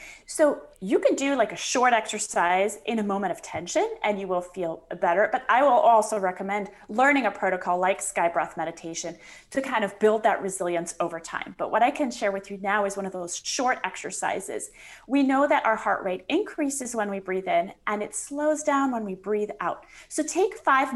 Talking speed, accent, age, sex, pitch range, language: 210 wpm, American, 30-49, female, 195-260 Hz, English